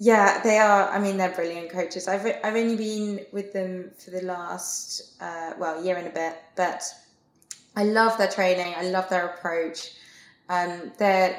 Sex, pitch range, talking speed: female, 170-200 Hz, 180 wpm